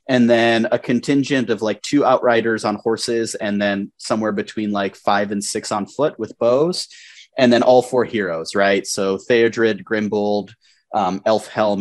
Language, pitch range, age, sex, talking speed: English, 100-130 Hz, 30-49, male, 170 wpm